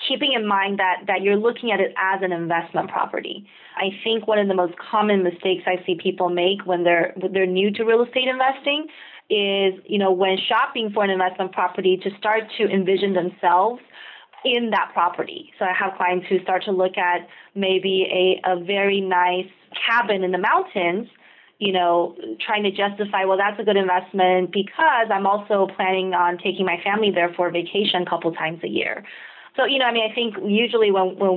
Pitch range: 180-215 Hz